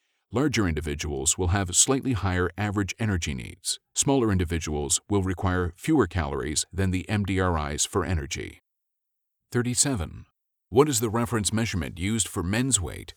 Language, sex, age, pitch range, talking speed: English, male, 40-59, 85-110 Hz, 135 wpm